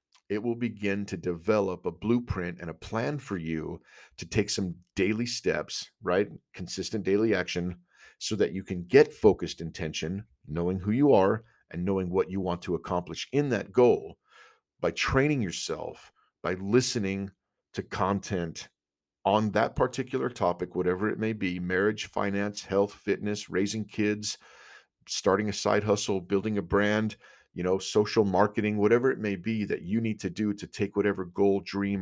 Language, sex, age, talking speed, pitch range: English, male, 40-59, 165 wpm, 90-105 Hz